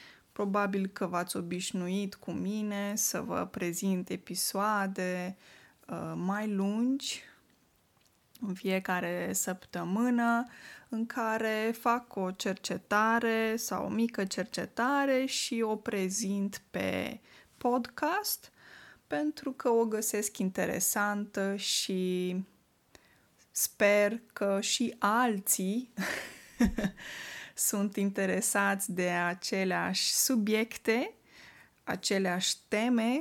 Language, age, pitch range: Romanian, 20-39, 190-230 Hz